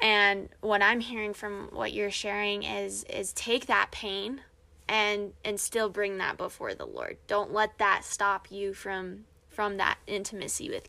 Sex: female